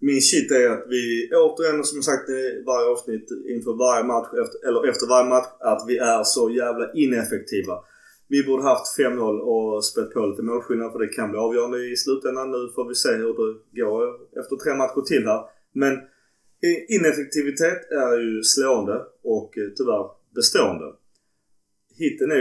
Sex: male